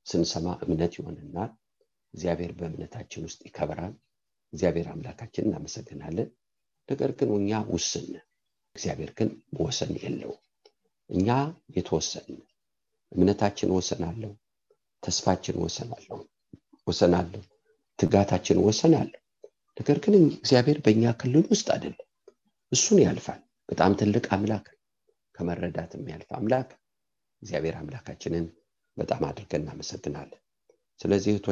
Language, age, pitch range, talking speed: English, 50-69, 85-120 Hz, 85 wpm